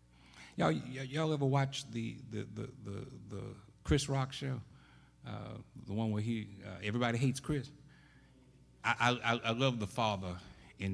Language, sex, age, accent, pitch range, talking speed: English, male, 60-79, American, 100-145 Hz, 155 wpm